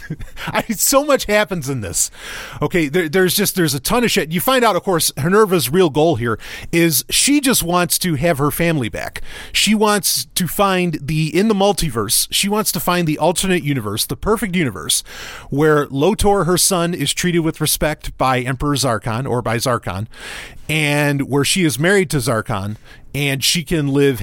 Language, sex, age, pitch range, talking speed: English, male, 30-49, 135-195 Hz, 190 wpm